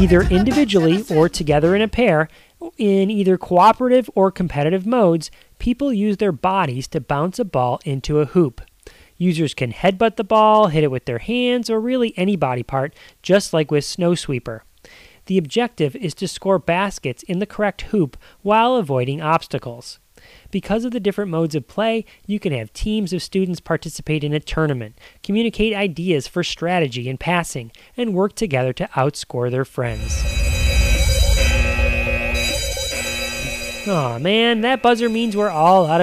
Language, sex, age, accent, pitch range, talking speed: English, male, 30-49, American, 145-210 Hz, 155 wpm